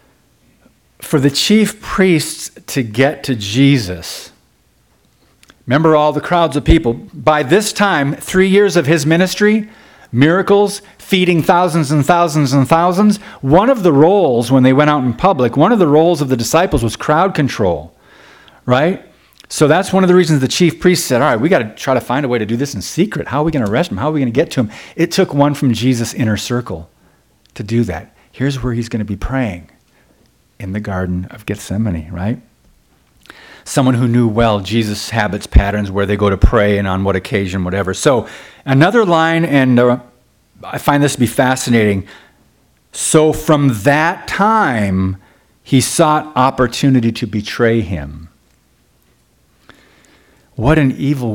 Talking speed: 180 wpm